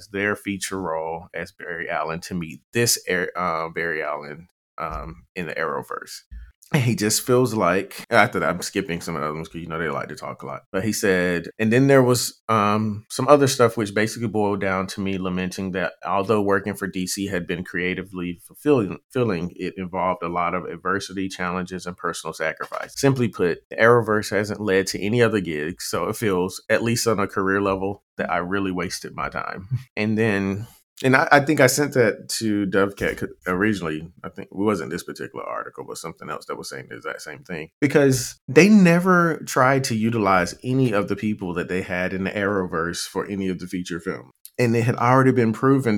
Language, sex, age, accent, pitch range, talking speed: English, male, 30-49, American, 90-115 Hz, 205 wpm